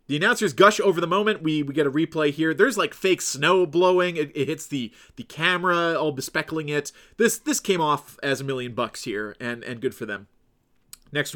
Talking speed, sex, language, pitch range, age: 215 wpm, male, English, 135-175 Hz, 30-49